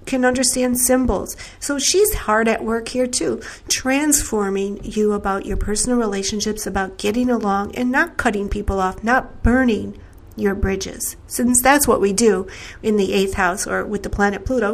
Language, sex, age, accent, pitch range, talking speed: English, female, 50-69, American, 200-240 Hz, 170 wpm